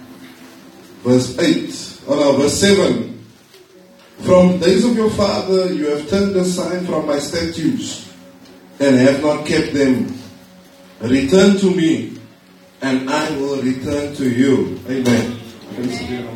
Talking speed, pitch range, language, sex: 120 wpm, 120-175 Hz, English, male